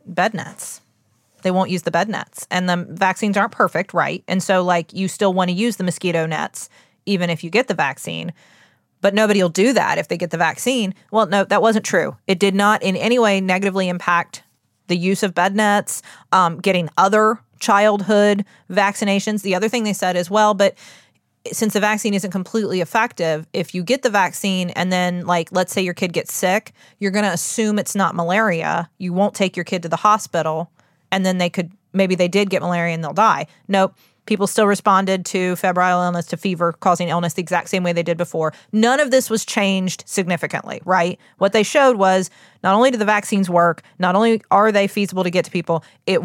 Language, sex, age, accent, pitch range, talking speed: English, female, 30-49, American, 175-205 Hz, 210 wpm